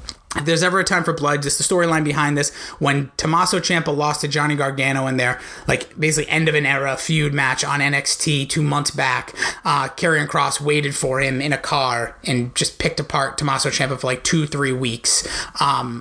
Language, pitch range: English, 140-165 Hz